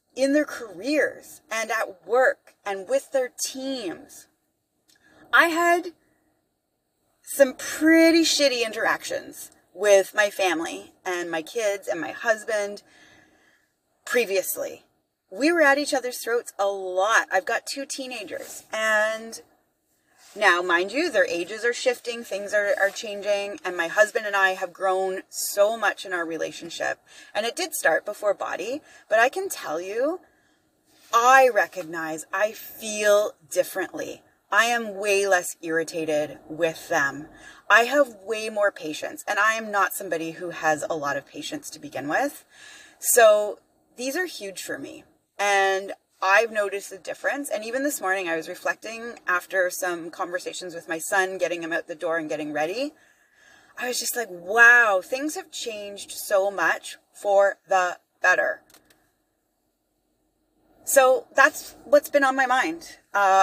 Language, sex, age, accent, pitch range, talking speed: English, female, 30-49, American, 195-290 Hz, 150 wpm